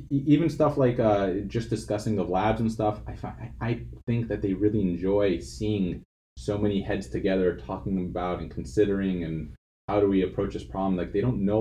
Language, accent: English, American